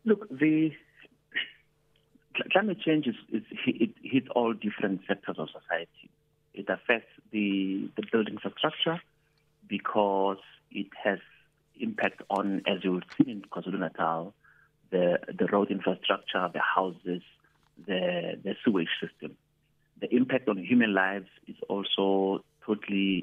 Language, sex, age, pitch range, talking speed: English, male, 50-69, 95-135 Hz, 125 wpm